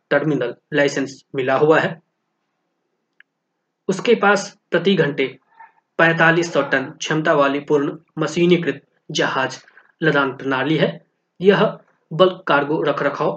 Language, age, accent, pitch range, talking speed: Hindi, 20-39, native, 145-185 Hz, 105 wpm